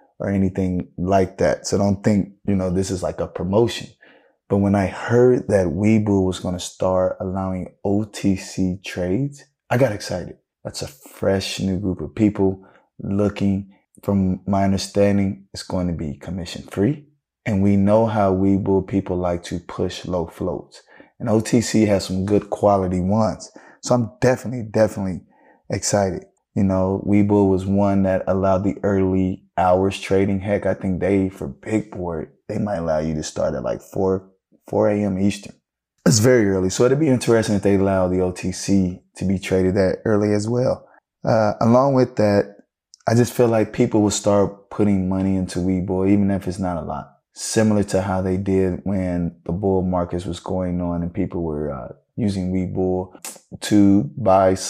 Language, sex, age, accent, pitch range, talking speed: English, male, 20-39, American, 95-105 Hz, 175 wpm